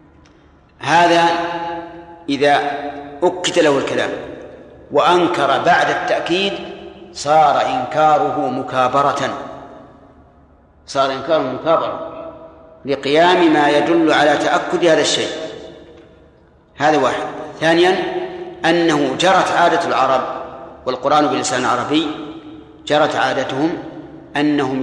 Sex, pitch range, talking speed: male, 140-170 Hz, 80 wpm